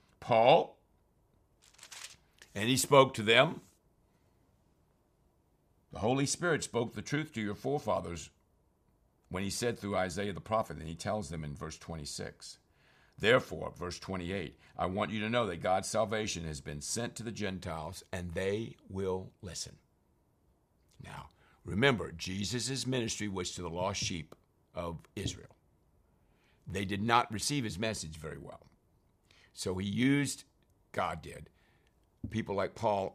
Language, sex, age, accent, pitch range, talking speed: English, male, 60-79, American, 90-115 Hz, 140 wpm